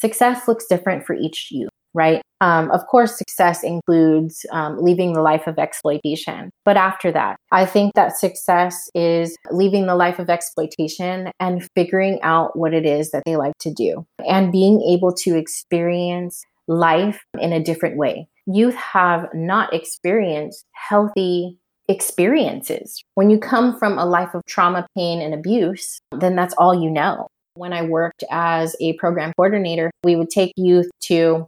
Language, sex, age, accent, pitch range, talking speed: English, female, 20-39, American, 170-190 Hz, 165 wpm